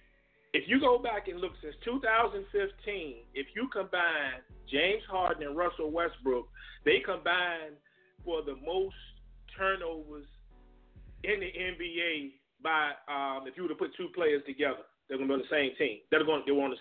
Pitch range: 145-180 Hz